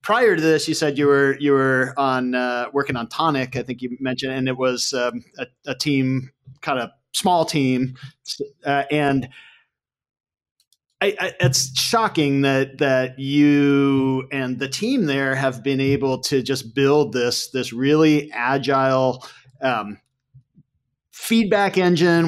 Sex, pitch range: male, 130-155 Hz